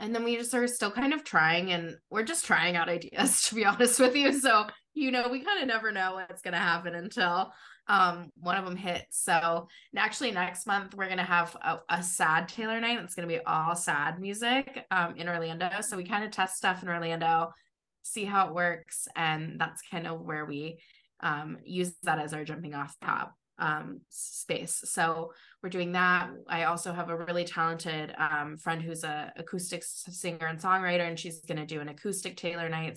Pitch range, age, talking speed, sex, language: 165-195 Hz, 20-39, 210 wpm, female, English